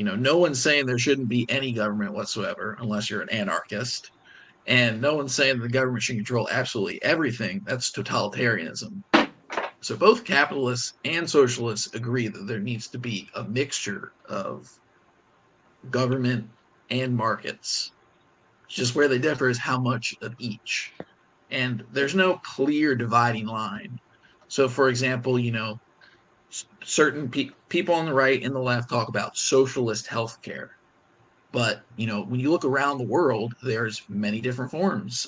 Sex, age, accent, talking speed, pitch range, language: male, 50-69, American, 155 wpm, 115-135 Hz, English